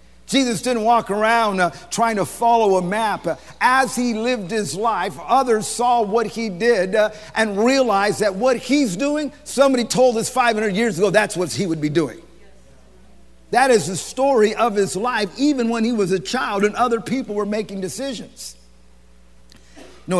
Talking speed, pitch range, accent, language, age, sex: 175 wpm, 175-235 Hz, American, English, 50-69, male